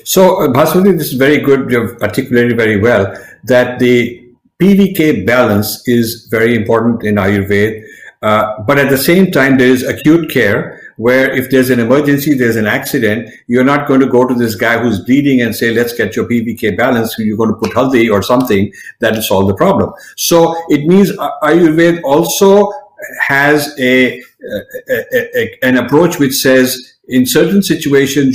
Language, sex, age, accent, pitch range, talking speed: English, male, 50-69, Indian, 115-155 Hz, 175 wpm